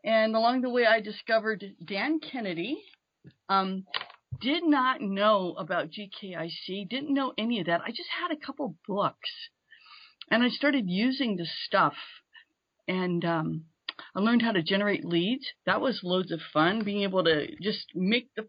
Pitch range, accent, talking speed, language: 190-270 Hz, American, 160 wpm, English